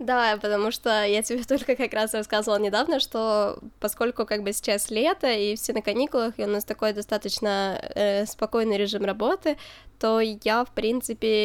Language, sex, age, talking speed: Ukrainian, female, 10-29, 175 wpm